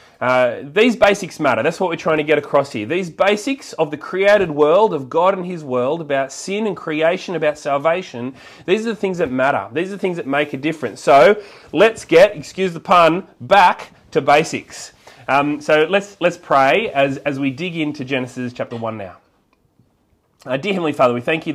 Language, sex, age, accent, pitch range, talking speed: English, male, 30-49, Australian, 120-160 Hz, 205 wpm